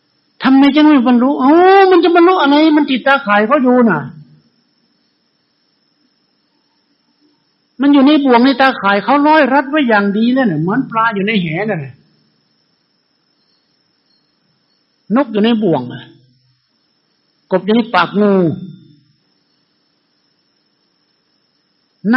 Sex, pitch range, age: male, 180-275 Hz, 60-79